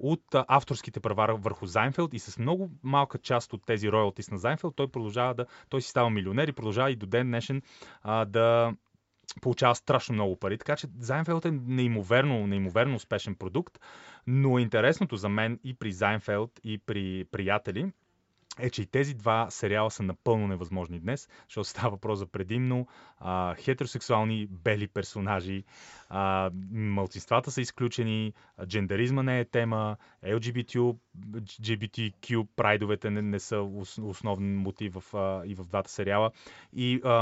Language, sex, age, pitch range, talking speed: Bulgarian, male, 30-49, 100-125 Hz, 145 wpm